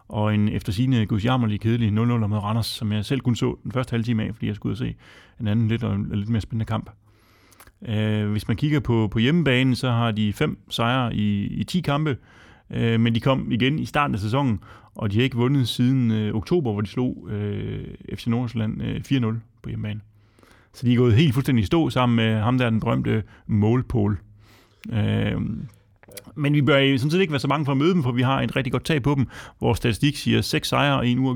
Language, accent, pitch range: Danish, native, 105-125 Hz